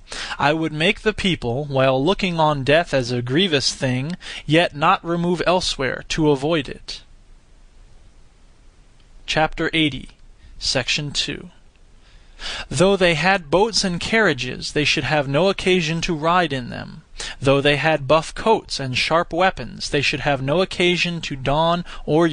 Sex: male